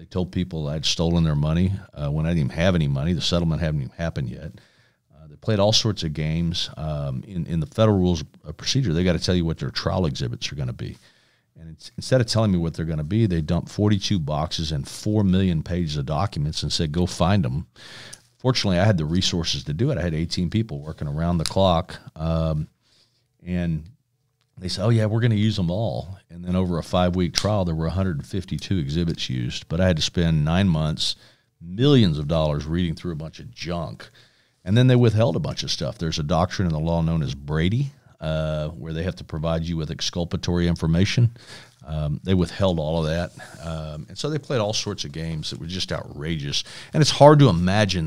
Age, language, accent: 40-59, English, American